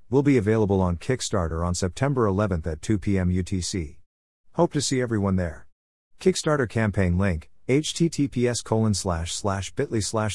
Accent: American